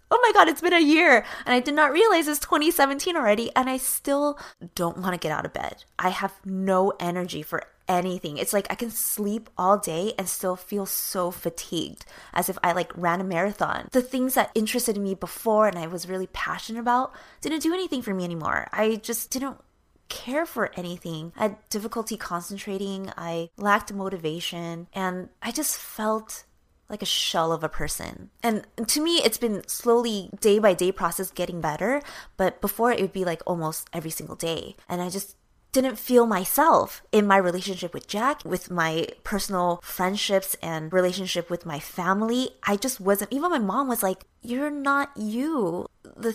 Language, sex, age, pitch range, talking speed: English, female, 20-39, 180-235 Hz, 190 wpm